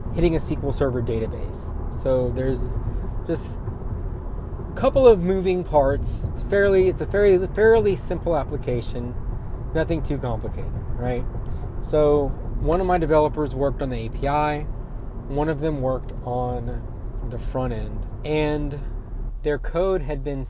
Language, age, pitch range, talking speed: English, 20-39, 115-145 Hz, 140 wpm